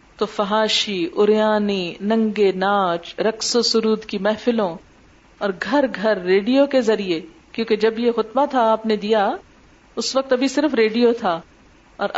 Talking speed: 155 wpm